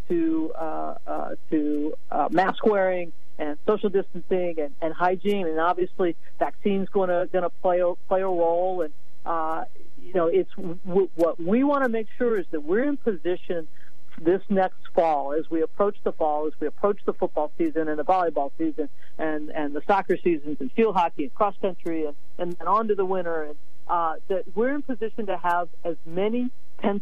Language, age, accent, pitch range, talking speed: English, 50-69, American, 165-205 Hz, 195 wpm